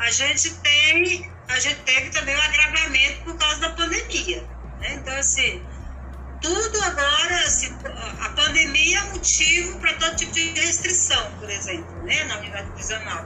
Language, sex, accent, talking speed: Portuguese, female, Brazilian, 160 wpm